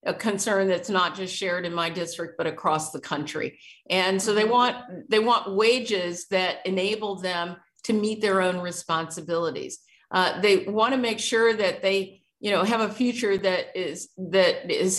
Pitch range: 190-230 Hz